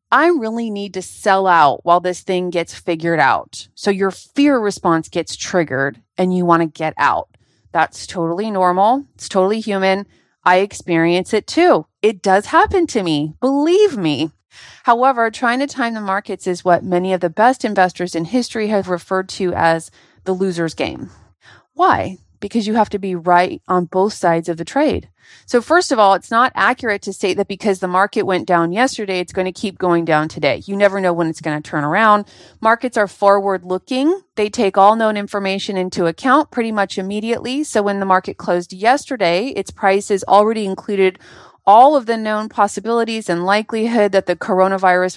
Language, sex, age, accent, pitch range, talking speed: English, female, 30-49, American, 180-225 Hz, 185 wpm